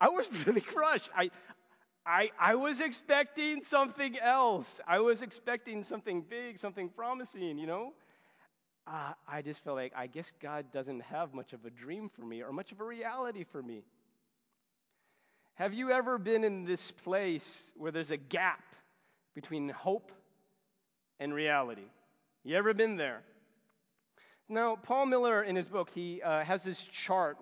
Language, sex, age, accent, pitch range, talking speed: English, male, 30-49, American, 150-210 Hz, 160 wpm